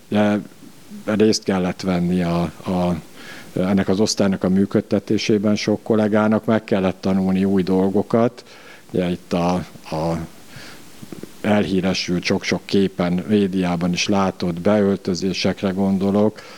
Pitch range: 90-105 Hz